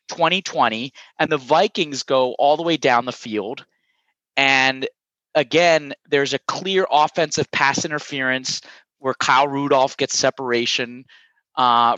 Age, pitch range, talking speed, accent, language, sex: 30-49, 120-160 Hz, 125 wpm, American, English, male